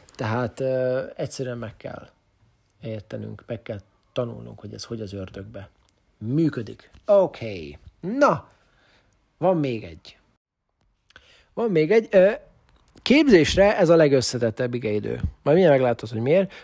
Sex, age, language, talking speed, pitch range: male, 40-59, English, 125 wpm, 115-155 Hz